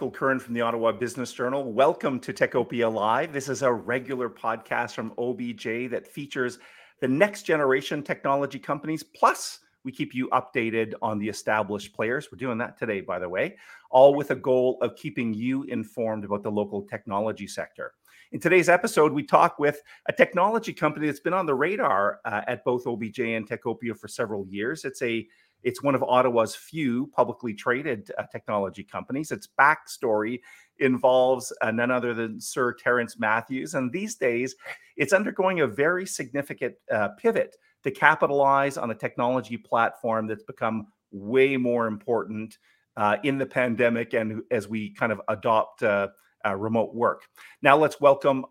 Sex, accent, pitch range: male, American, 115-145 Hz